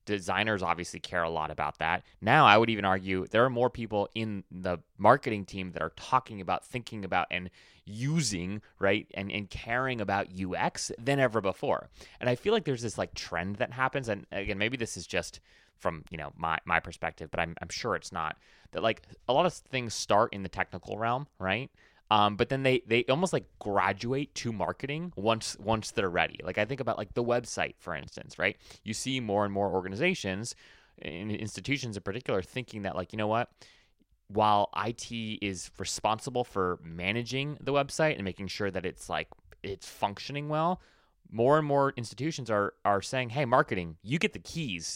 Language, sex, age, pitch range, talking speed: English, male, 20-39, 95-125 Hz, 195 wpm